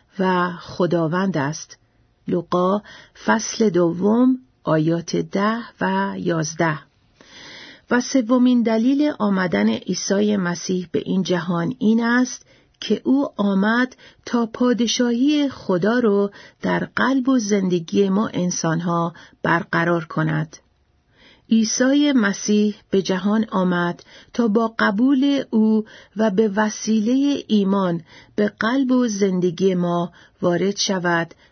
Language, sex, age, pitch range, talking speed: Persian, female, 50-69, 180-235 Hz, 105 wpm